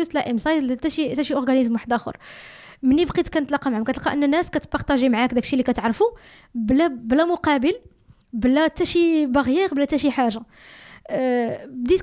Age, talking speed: 20-39, 150 wpm